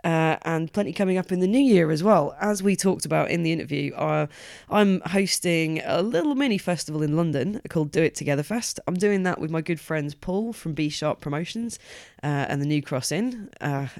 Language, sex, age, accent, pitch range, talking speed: English, female, 20-39, British, 150-200 Hz, 215 wpm